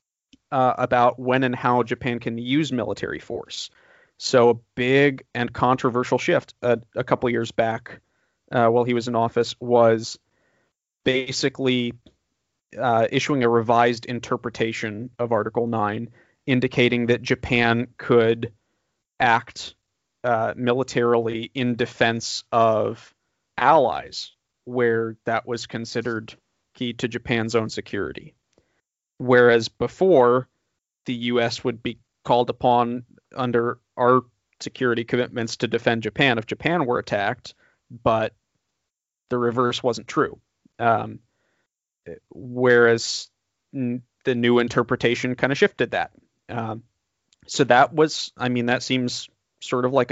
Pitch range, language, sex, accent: 115-125 Hz, English, male, American